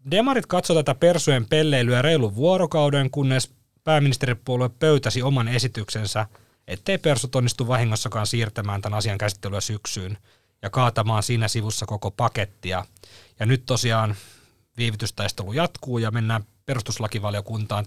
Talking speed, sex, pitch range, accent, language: 120 wpm, male, 105-130 Hz, native, Finnish